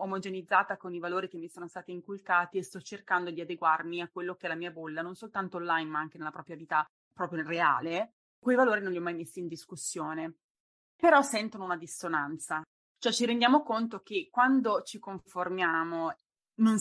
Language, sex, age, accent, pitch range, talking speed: Italian, female, 20-39, native, 175-210 Hz, 195 wpm